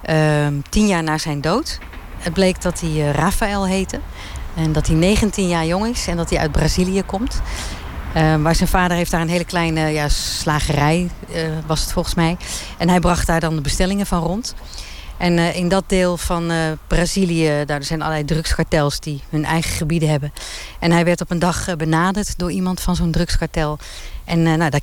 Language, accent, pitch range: Dutch, Dutch, 150-175 Hz